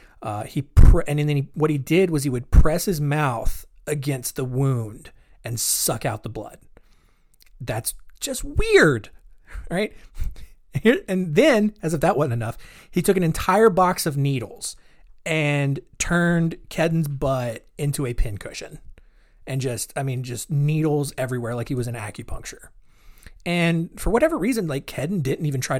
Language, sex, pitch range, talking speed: English, male, 125-165 Hz, 160 wpm